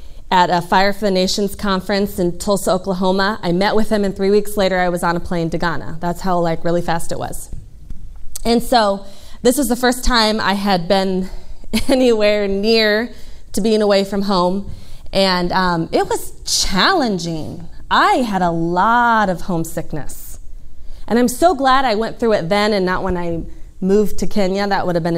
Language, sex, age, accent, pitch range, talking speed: English, female, 20-39, American, 175-225 Hz, 190 wpm